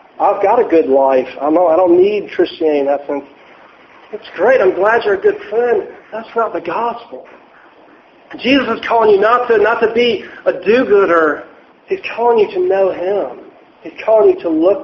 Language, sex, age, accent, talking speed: English, male, 50-69, American, 185 wpm